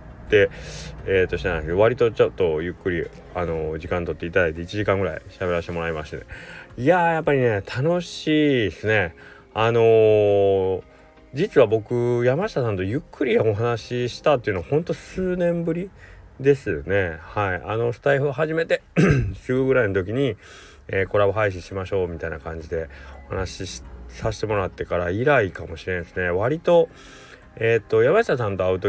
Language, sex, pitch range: Japanese, male, 90-125 Hz